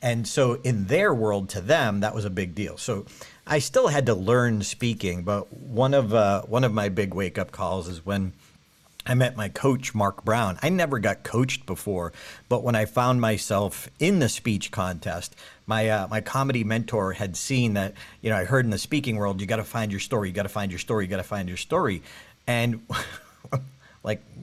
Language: English